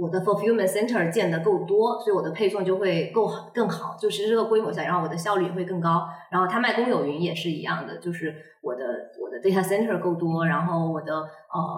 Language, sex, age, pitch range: Chinese, female, 20-39, 165-195 Hz